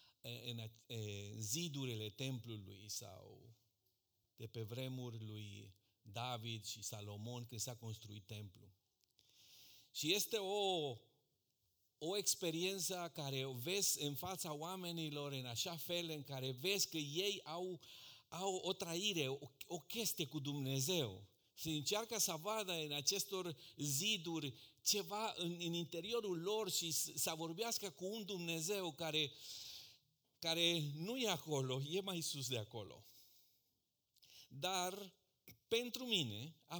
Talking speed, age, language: 120 wpm, 50-69, Romanian